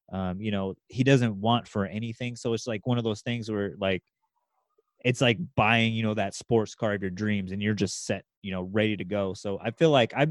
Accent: American